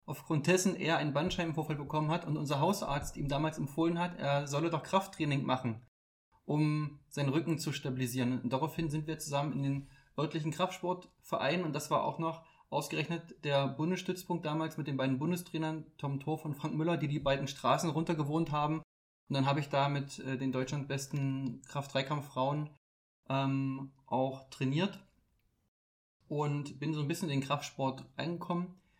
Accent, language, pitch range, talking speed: German, German, 135-165 Hz, 165 wpm